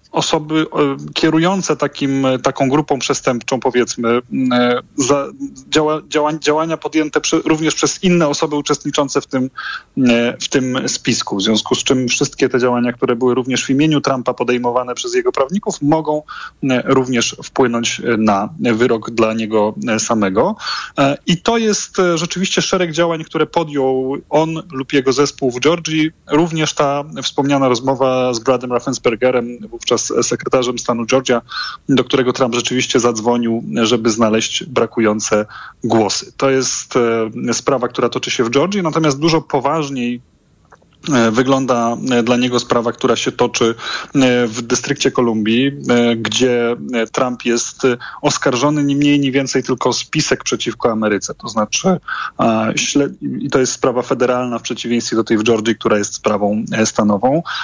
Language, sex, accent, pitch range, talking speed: Polish, male, native, 120-145 Hz, 135 wpm